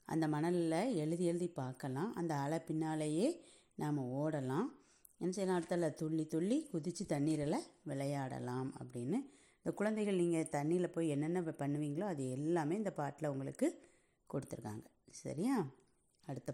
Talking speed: 125 wpm